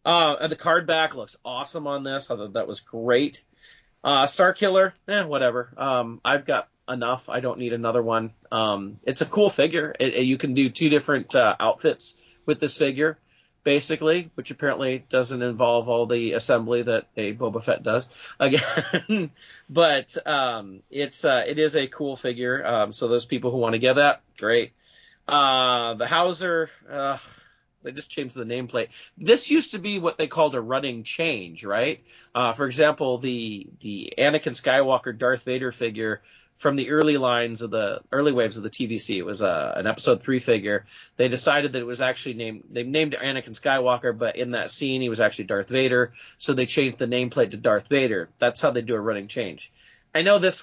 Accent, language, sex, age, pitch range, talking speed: American, English, male, 40-59, 120-155 Hz, 195 wpm